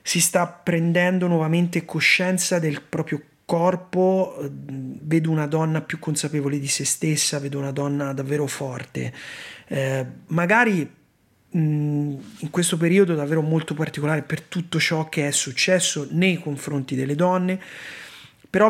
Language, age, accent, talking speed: Italian, 30-49, native, 130 wpm